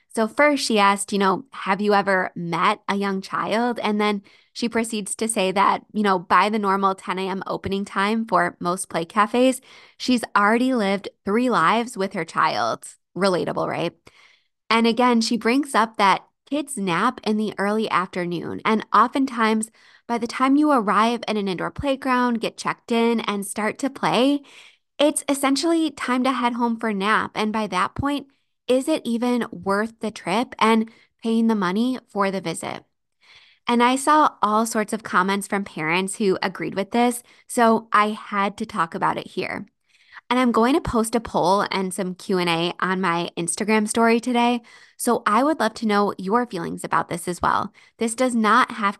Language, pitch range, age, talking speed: English, 195-240 Hz, 20-39, 185 wpm